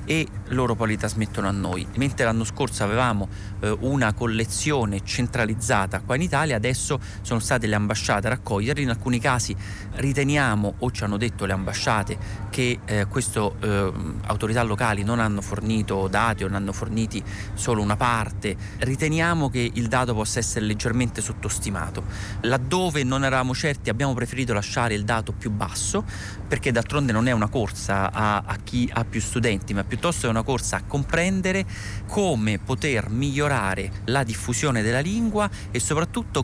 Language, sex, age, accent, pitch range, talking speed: Italian, male, 30-49, native, 100-125 Hz, 165 wpm